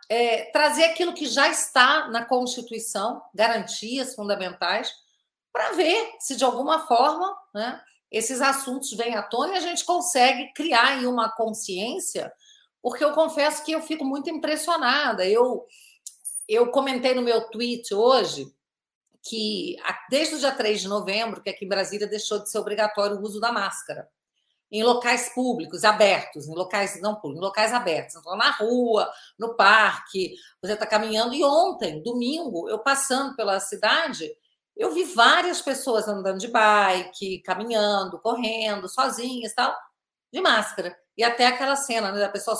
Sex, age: female, 50-69